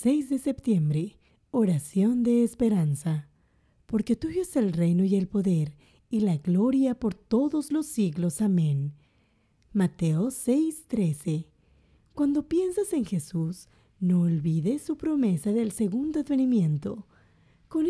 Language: English